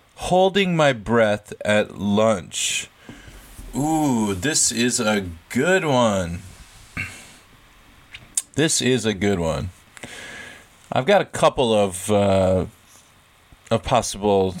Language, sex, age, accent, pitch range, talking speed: English, male, 30-49, American, 100-125 Hz, 100 wpm